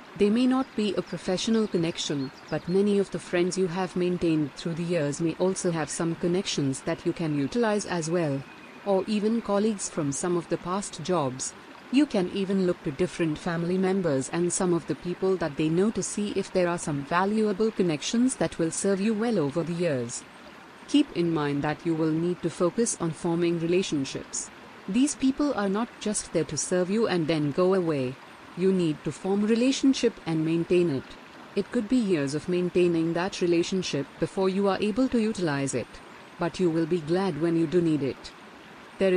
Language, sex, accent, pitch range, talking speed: Hindi, female, native, 165-195 Hz, 200 wpm